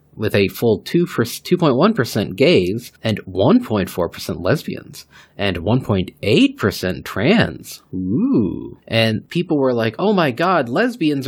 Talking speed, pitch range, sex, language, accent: 115 wpm, 100-150 Hz, male, English, American